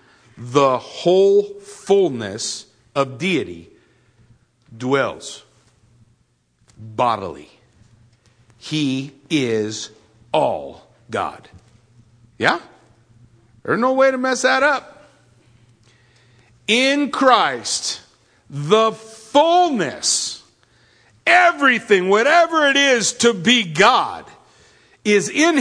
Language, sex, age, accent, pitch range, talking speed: English, male, 50-69, American, 115-160 Hz, 75 wpm